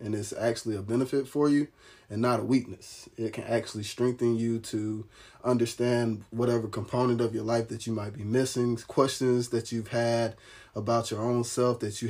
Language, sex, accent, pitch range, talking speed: English, male, American, 110-120 Hz, 190 wpm